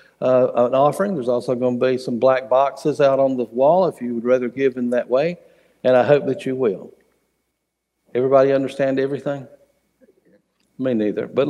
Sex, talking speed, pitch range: male, 185 wpm, 125-150 Hz